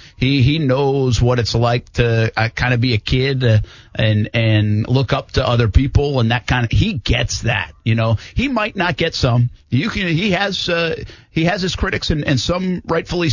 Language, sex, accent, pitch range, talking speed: English, male, American, 105-140 Hz, 205 wpm